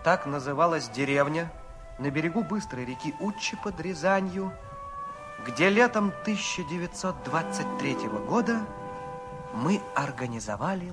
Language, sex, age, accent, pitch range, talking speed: Russian, male, 30-49, native, 145-235 Hz, 90 wpm